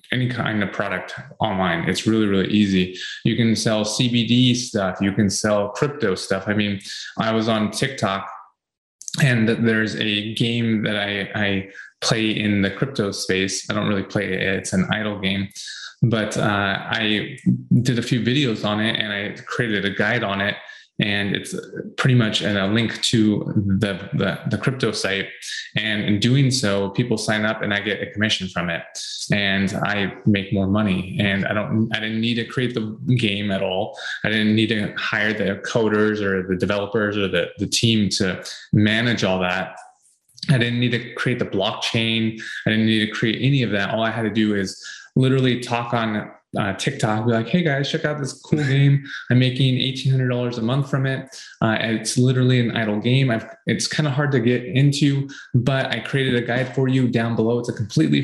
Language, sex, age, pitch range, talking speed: English, male, 20-39, 100-125 Hz, 195 wpm